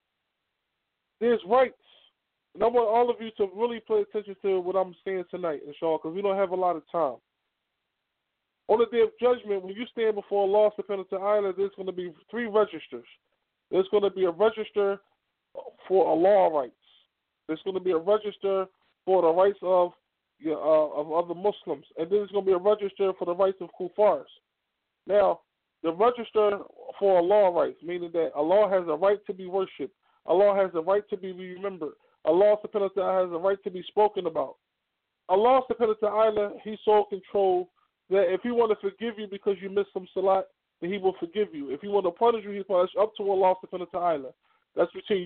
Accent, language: American, English